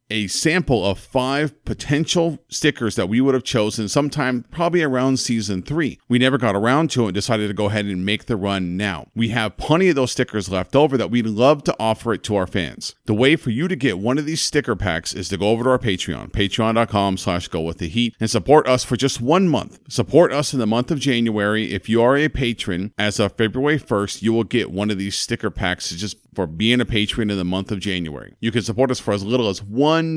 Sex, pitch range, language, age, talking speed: male, 100-130 Hz, English, 40-59, 245 wpm